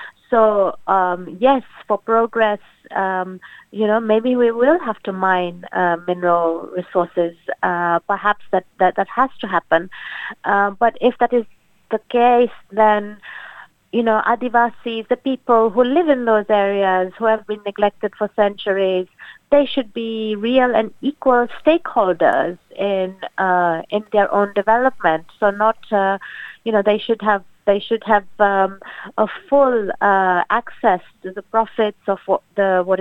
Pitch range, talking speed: 185-225 Hz, 155 wpm